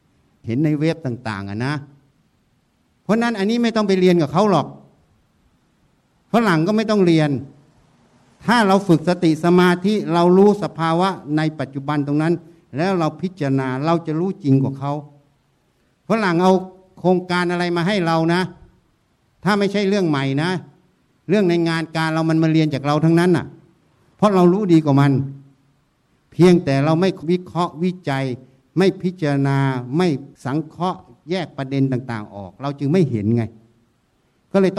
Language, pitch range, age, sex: Thai, 135-180 Hz, 60-79, male